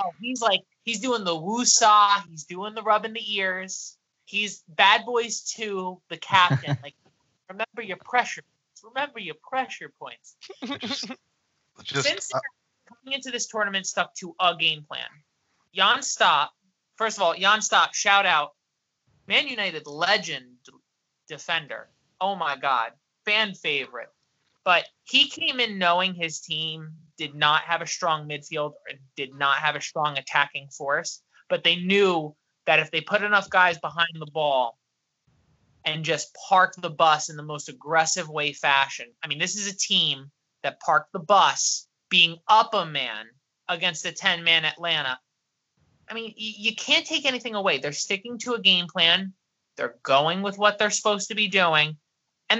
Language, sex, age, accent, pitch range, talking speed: English, male, 20-39, American, 155-215 Hz, 160 wpm